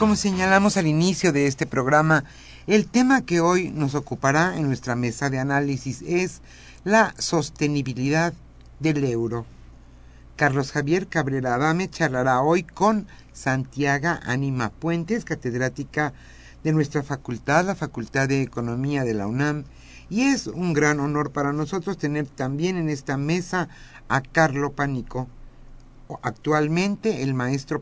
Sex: male